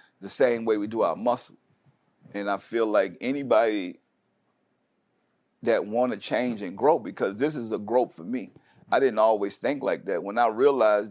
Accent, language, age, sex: American, English, 50-69, male